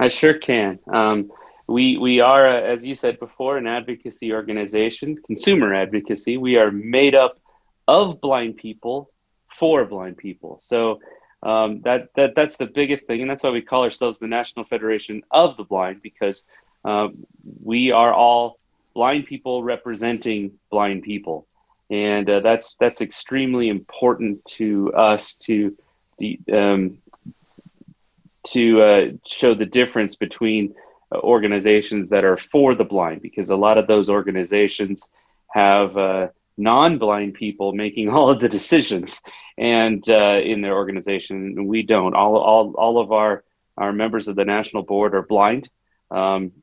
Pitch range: 100-120 Hz